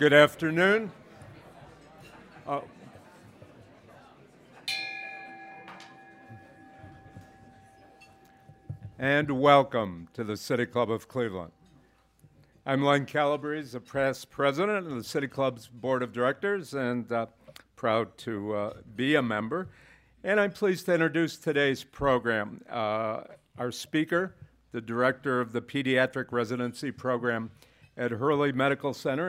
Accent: American